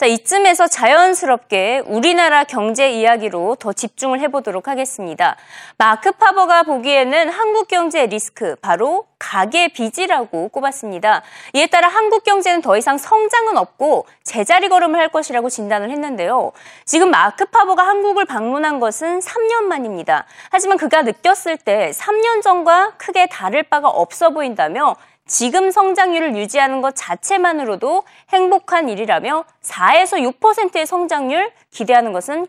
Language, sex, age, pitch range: Korean, female, 20-39, 250-375 Hz